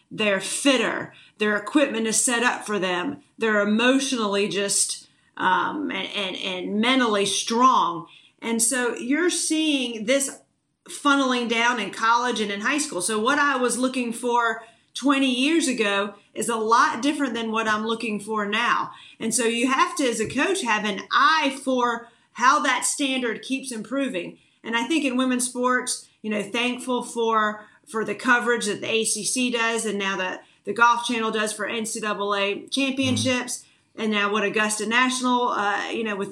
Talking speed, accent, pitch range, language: 170 wpm, American, 215-260 Hz, English